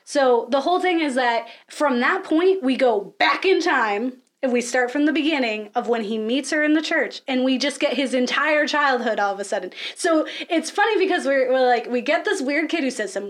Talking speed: 245 wpm